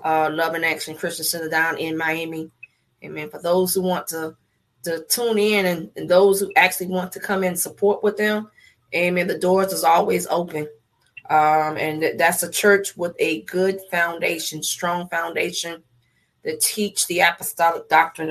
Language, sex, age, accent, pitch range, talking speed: English, female, 20-39, American, 155-185 Hz, 170 wpm